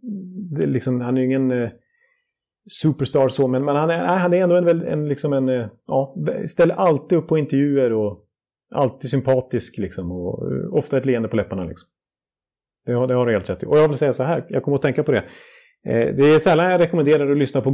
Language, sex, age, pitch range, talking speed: Swedish, male, 30-49, 125-160 Hz, 235 wpm